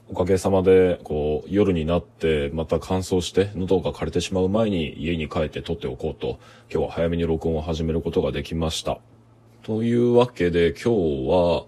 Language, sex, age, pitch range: Japanese, male, 20-39, 80-115 Hz